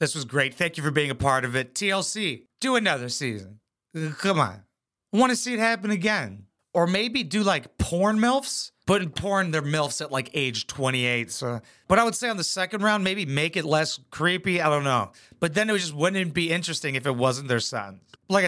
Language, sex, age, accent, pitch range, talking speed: English, male, 30-49, American, 125-185 Hz, 225 wpm